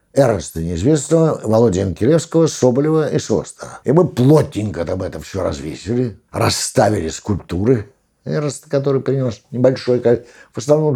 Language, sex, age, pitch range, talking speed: Russian, male, 60-79, 105-140 Hz, 115 wpm